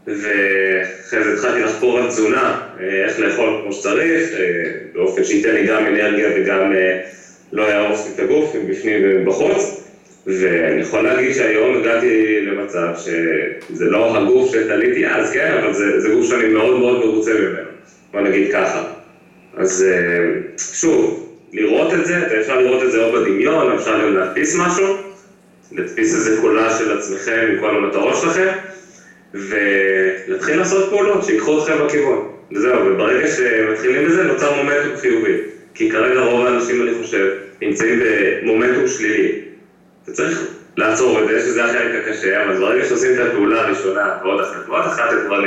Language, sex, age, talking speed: Hebrew, male, 30-49, 150 wpm